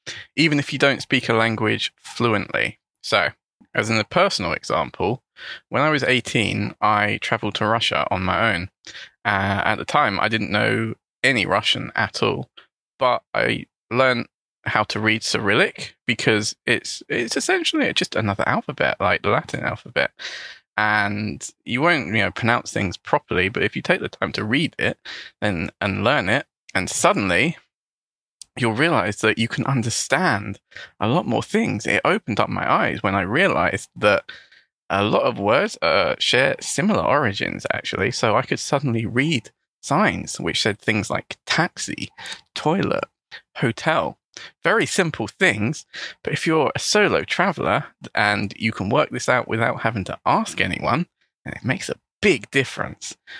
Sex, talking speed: male, 160 wpm